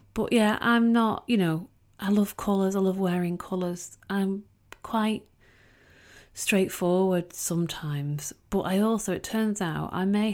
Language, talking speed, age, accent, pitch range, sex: English, 145 wpm, 30-49, British, 145-190 Hz, female